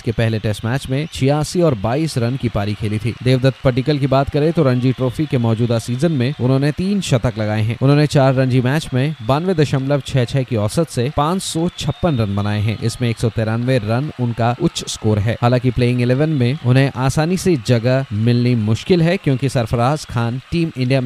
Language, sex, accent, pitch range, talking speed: Hindi, male, native, 115-145 Hz, 190 wpm